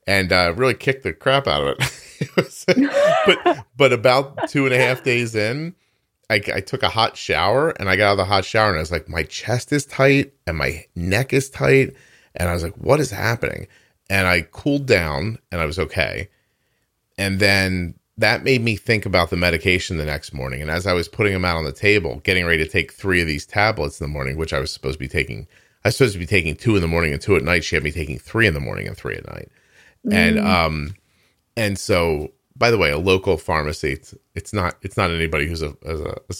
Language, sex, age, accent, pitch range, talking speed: English, male, 30-49, American, 80-105 Hz, 240 wpm